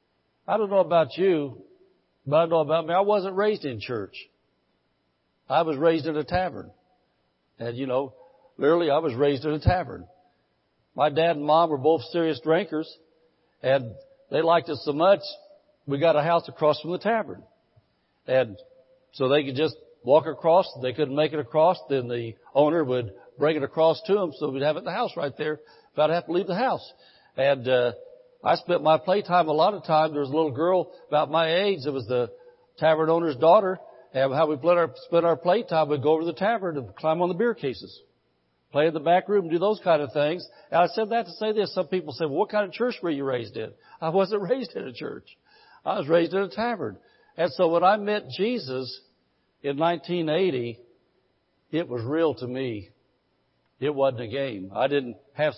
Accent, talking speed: American, 210 wpm